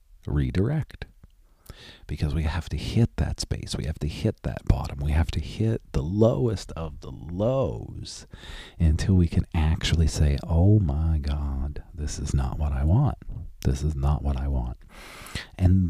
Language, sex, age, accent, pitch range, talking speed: English, male, 40-59, American, 75-95 Hz, 165 wpm